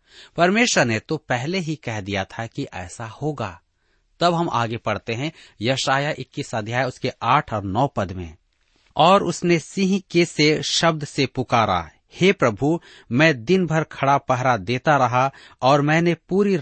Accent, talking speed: native, 165 wpm